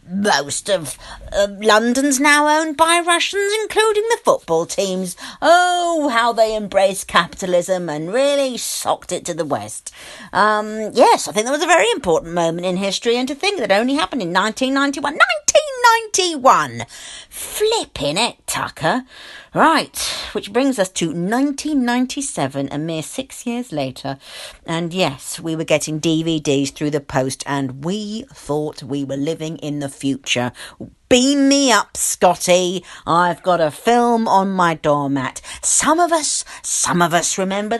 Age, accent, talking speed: 50-69, British, 150 wpm